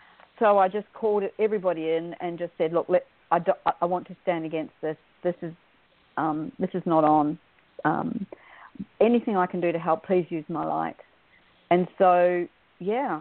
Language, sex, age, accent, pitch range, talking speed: English, female, 50-69, Australian, 165-195 Hz, 175 wpm